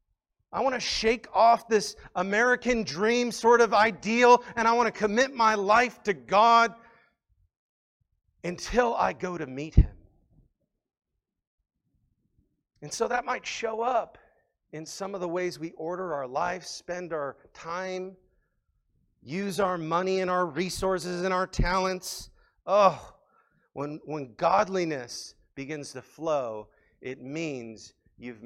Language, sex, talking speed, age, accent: English, male, 135 wpm, 40-59, American